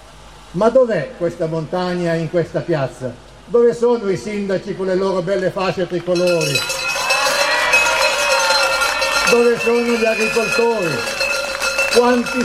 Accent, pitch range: native, 170-235 Hz